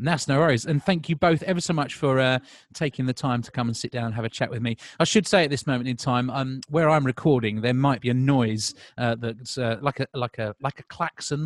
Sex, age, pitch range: male, 30-49, 115-155 Hz